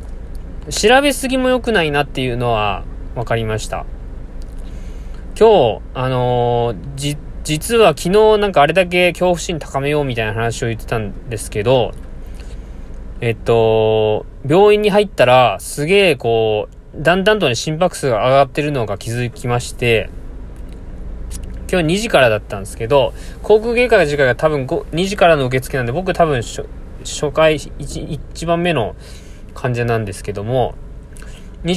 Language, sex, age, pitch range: Japanese, male, 20-39, 105-145 Hz